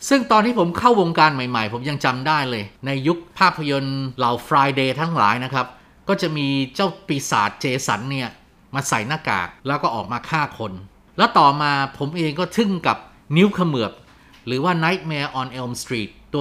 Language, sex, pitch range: Thai, male, 130-175 Hz